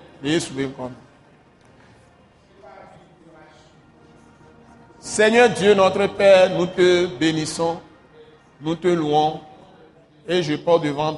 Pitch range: 145-170 Hz